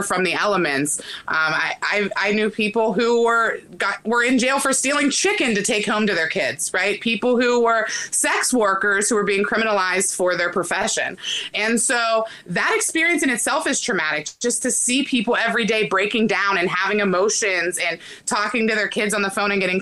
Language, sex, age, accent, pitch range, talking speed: English, female, 20-39, American, 185-240 Hz, 200 wpm